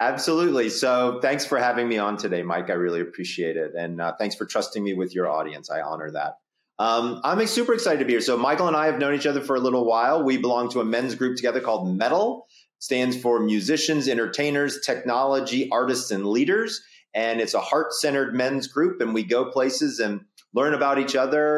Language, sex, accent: English, male, American